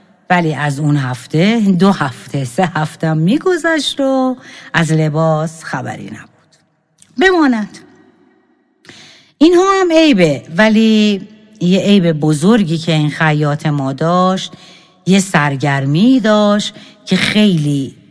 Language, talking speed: Persian, 105 wpm